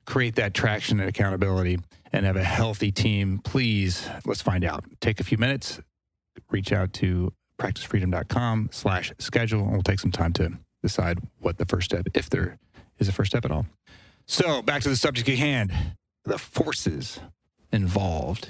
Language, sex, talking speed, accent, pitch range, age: English, male, 170 wpm, American, 95-120 Hz, 30-49